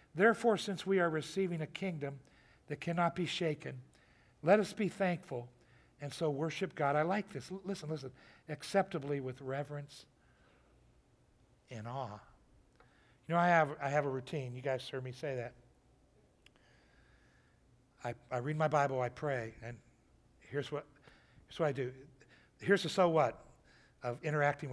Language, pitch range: English, 125-170 Hz